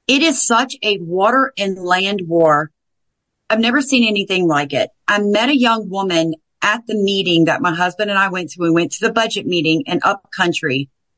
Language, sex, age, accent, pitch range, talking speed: English, female, 40-59, American, 185-230 Hz, 200 wpm